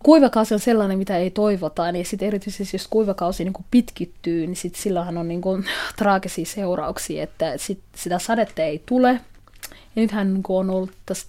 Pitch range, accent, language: 180-220 Hz, native, Finnish